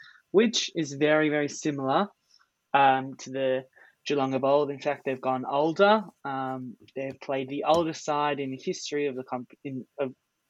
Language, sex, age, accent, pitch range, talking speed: English, male, 20-39, Australian, 135-160 Hz, 165 wpm